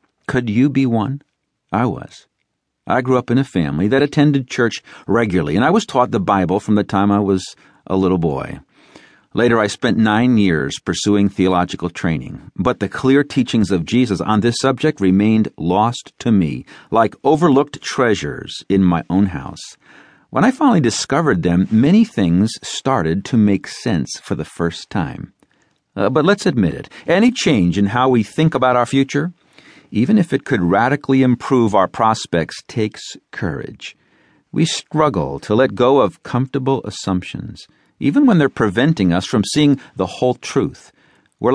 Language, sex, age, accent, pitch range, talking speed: English, male, 50-69, American, 95-130 Hz, 170 wpm